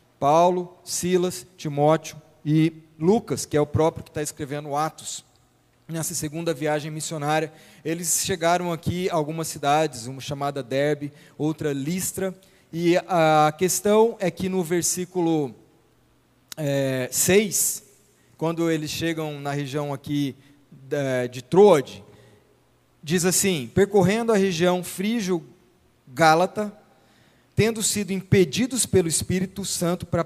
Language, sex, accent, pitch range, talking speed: Portuguese, male, Brazilian, 145-185 Hz, 115 wpm